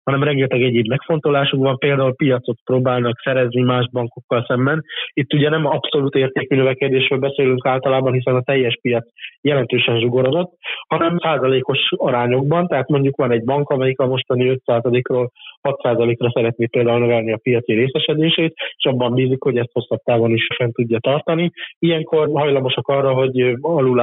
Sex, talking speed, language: male, 150 wpm, Hungarian